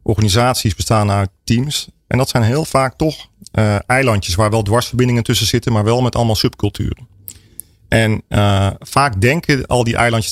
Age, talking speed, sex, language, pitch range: 40-59, 170 wpm, male, Dutch, 100-120 Hz